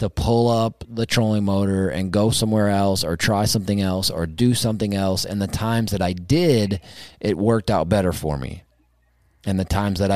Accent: American